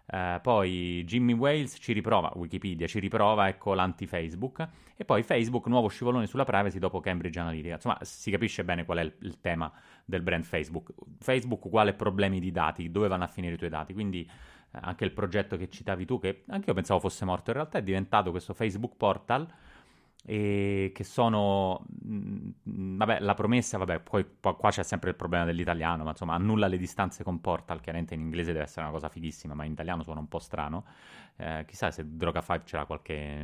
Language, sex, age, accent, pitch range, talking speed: Italian, male, 30-49, native, 85-105 Hz, 190 wpm